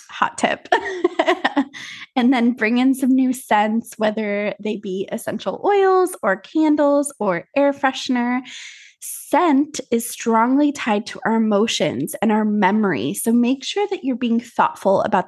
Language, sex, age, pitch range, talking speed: English, female, 20-39, 215-270 Hz, 145 wpm